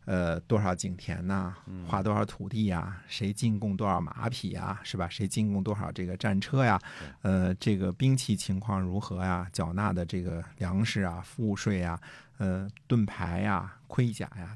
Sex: male